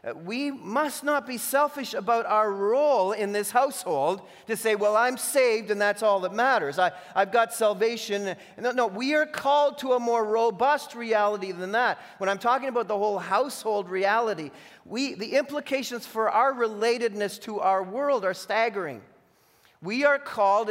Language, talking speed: English, 170 wpm